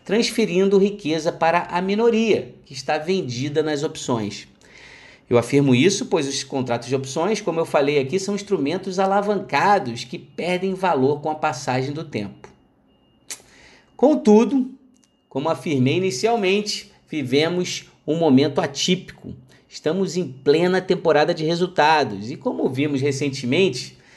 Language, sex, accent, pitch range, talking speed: Portuguese, male, Brazilian, 125-180 Hz, 125 wpm